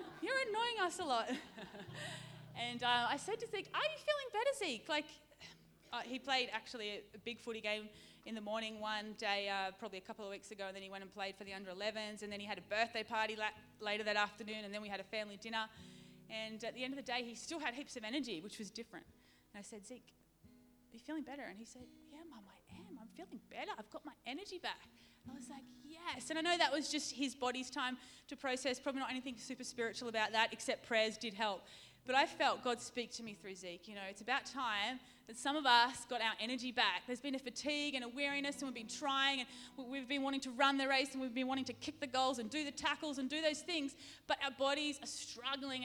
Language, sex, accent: English, female, Australian